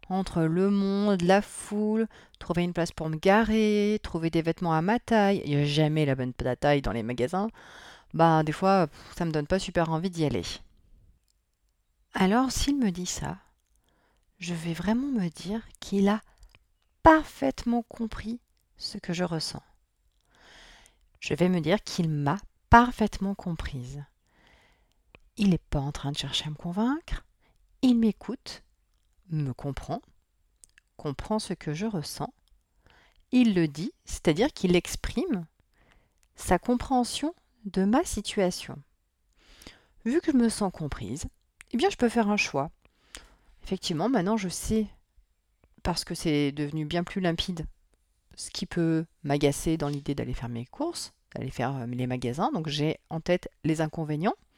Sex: female